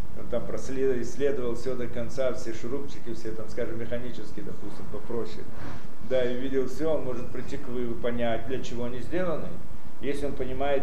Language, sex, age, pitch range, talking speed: Russian, male, 40-59, 115-140 Hz, 175 wpm